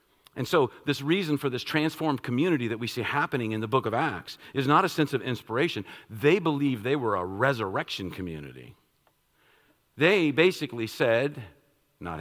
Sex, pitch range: male, 110-150 Hz